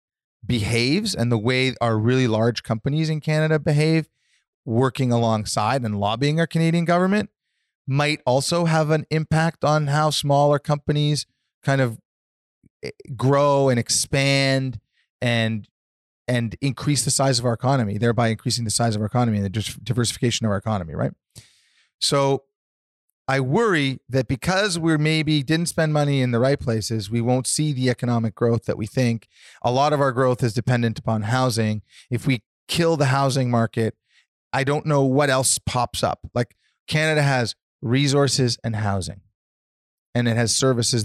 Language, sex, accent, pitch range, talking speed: English, male, American, 110-140 Hz, 160 wpm